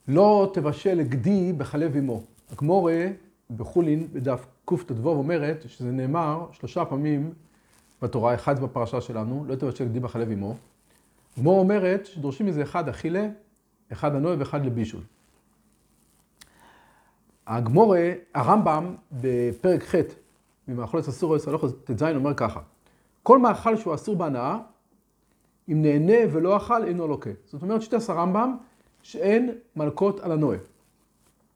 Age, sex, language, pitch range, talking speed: 40-59, male, Hebrew, 140-200 Hz, 125 wpm